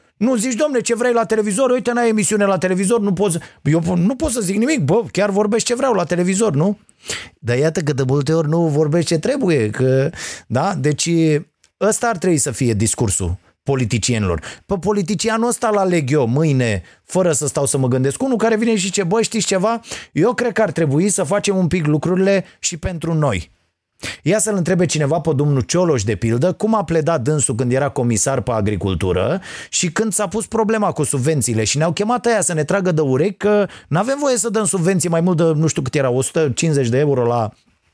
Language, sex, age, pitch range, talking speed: Romanian, male, 30-49, 145-210 Hz, 215 wpm